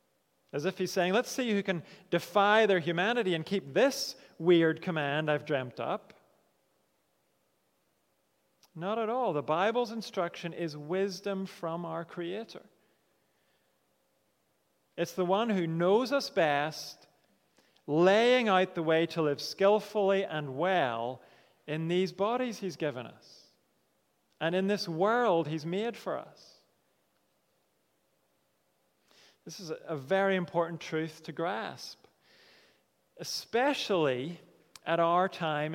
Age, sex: 40-59, male